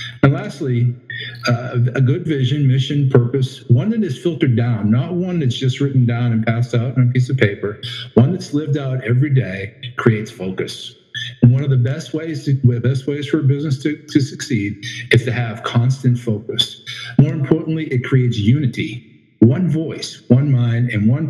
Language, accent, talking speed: English, American, 175 wpm